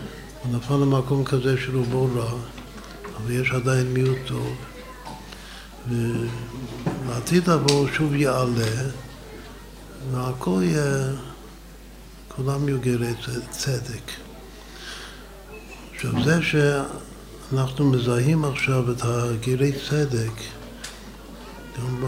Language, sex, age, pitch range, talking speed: Hebrew, male, 60-79, 120-135 Hz, 80 wpm